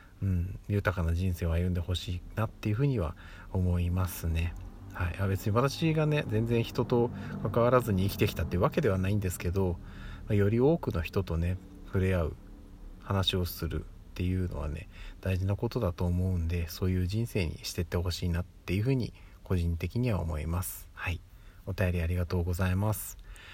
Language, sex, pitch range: Japanese, male, 90-110 Hz